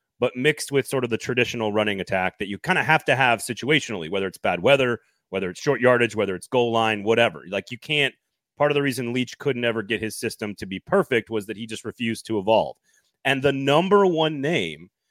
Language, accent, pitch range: English, American, 110-150 Hz